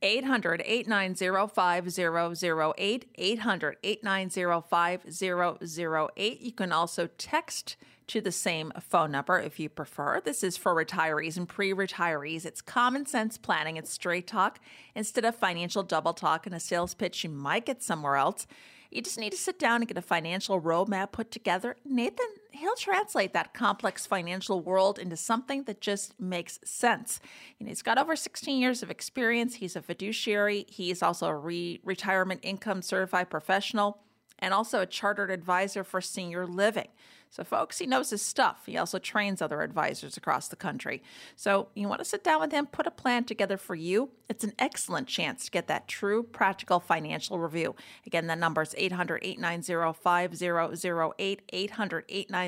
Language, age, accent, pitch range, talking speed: English, 40-59, American, 170-215 Hz, 155 wpm